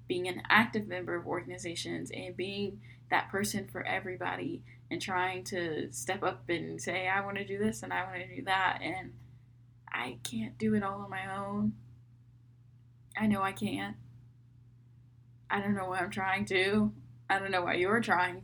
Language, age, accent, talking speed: English, 10-29, American, 175 wpm